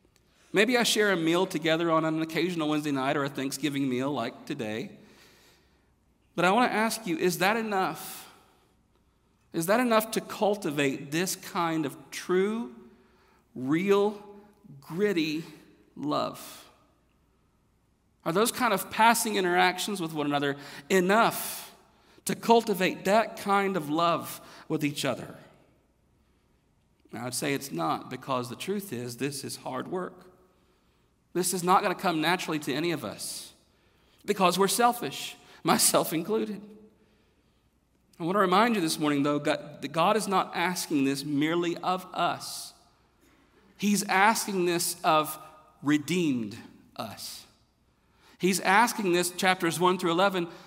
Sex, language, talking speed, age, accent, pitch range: male, English, 135 wpm, 50-69, American, 150-200 Hz